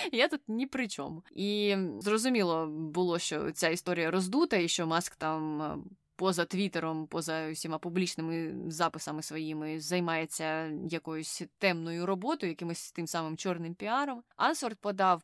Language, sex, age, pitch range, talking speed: Ukrainian, female, 20-39, 165-215 Hz, 135 wpm